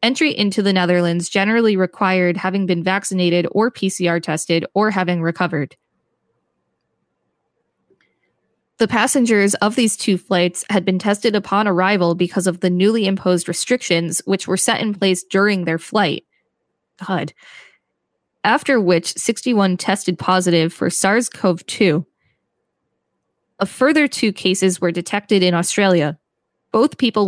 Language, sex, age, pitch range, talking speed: English, female, 20-39, 175-210 Hz, 130 wpm